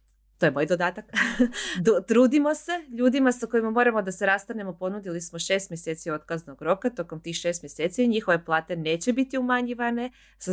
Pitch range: 160-230 Hz